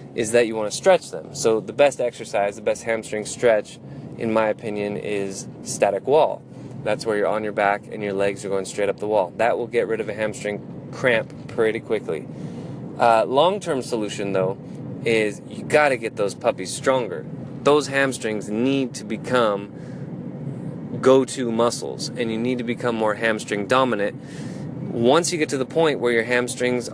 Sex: male